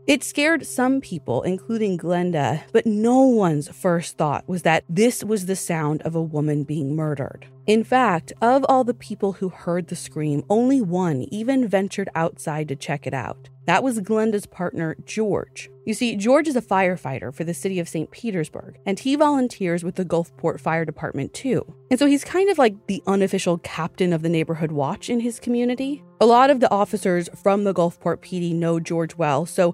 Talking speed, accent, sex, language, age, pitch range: 195 wpm, American, female, English, 30-49, 160-220 Hz